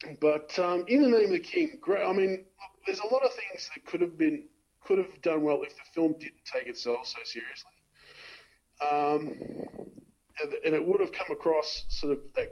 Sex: male